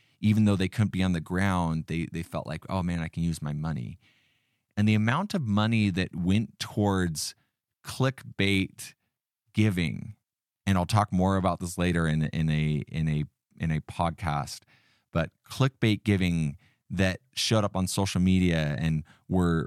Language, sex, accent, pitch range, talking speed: English, male, American, 85-105 Hz, 170 wpm